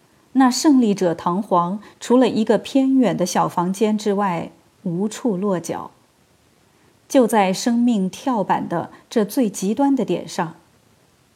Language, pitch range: Chinese, 180-240 Hz